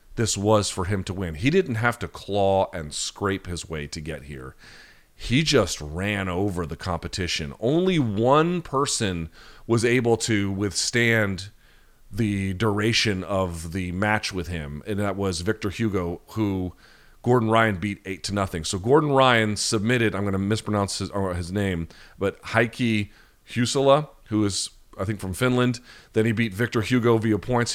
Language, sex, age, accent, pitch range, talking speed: English, male, 40-59, American, 95-115 Hz, 170 wpm